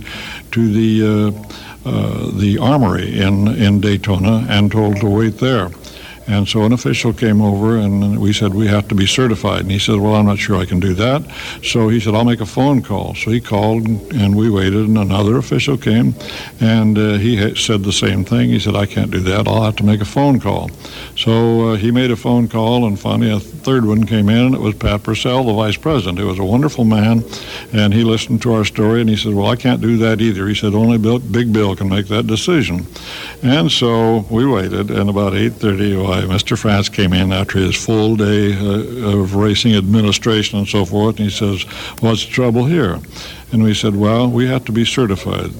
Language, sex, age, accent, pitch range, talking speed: English, male, 60-79, American, 100-115 Hz, 225 wpm